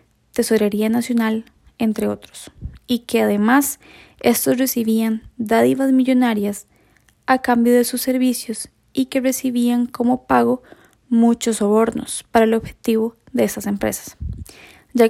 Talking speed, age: 120 wpm, 10-29